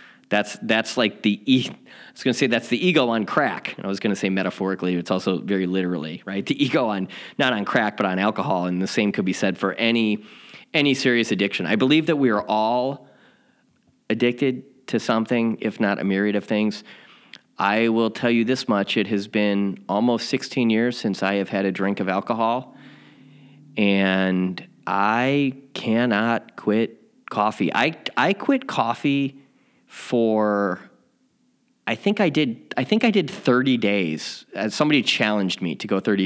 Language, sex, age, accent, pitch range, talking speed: English, male, 30-49, American, 100-130 Hz, 180 wpm